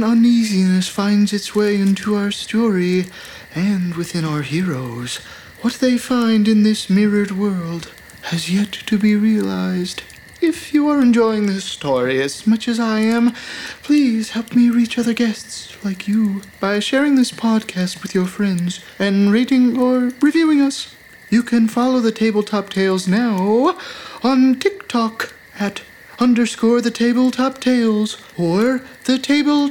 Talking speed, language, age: 145 wpm, English, 20-39